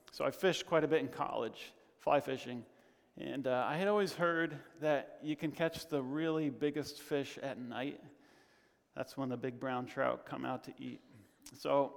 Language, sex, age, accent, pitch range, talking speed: English, male, 30-49, American, 140-165 Hz, 185 wpm